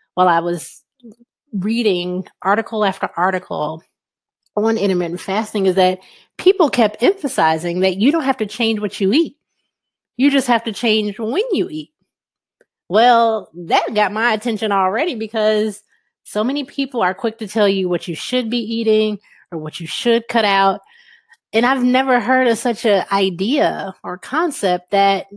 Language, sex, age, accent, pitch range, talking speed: English, female, 30-49, American, 190-255 Hz, 165 wpm